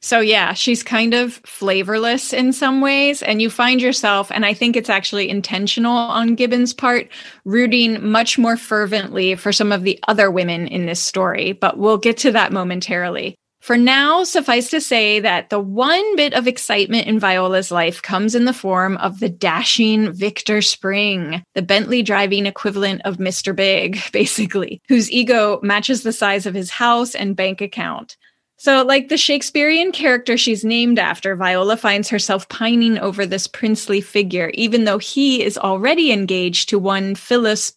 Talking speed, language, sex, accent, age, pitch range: 170 wpm, English, female, American, 20-39, 190-235 Hz